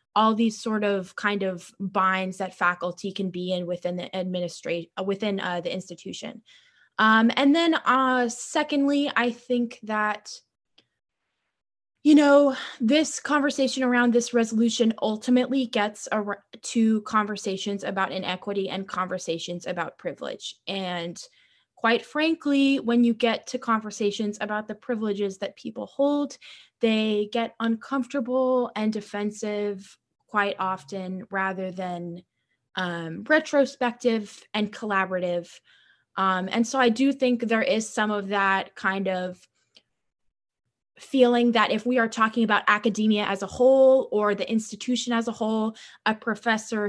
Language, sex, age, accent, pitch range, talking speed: English, female, 10-29, American, 195-250 Hz, 135 wpm